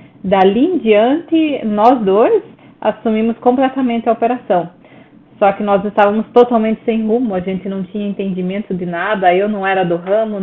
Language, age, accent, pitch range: Portuguese, 20-39, Brazilian, 195-235 Hz